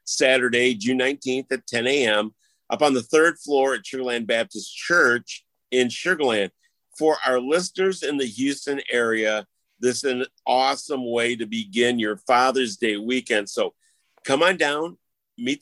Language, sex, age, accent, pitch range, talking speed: English, male, 50-69, American, 120-160 Hz, 155 wpm